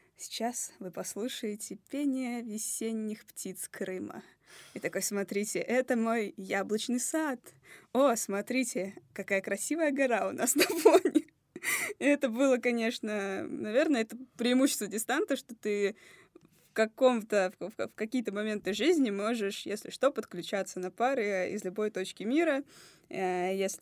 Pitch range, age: 195-240 Hz, 20-39